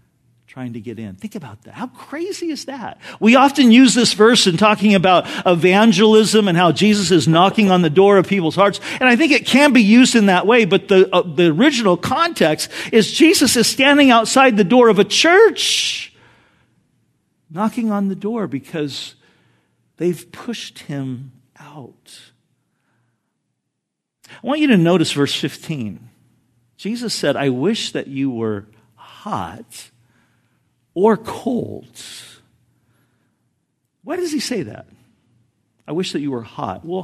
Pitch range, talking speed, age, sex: 140-235 Hz, 155 wpm, 50-69, male